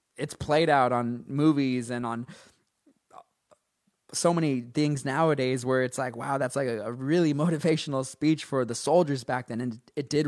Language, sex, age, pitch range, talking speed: English, male, 20-39, 115-145 Hz, 175 wpm